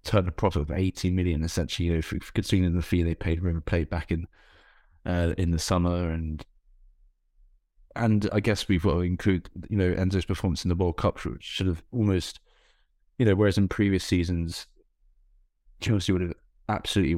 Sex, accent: male, British